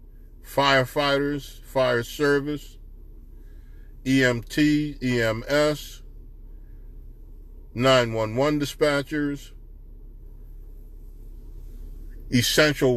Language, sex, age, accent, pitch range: English, male, 40-59, American, 105-145 Hz